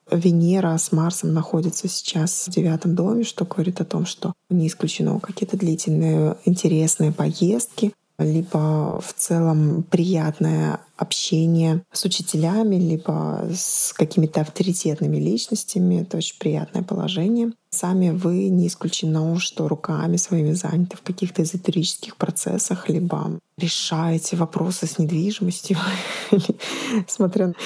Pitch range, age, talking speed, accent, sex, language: 165-195 Hz, 20-39, 115 wpm, native, female, Russian